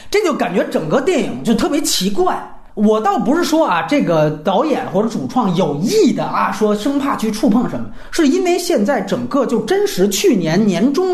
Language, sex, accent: Chinese, male, native